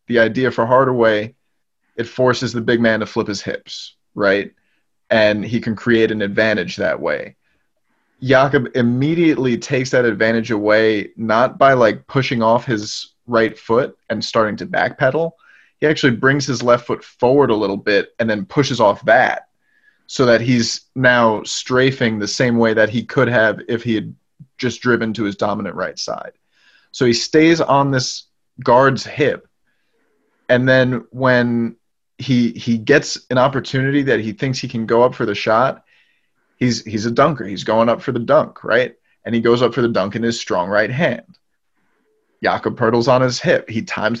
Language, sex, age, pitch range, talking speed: English, male, 30-49, 115-135 Hz, 180 wpm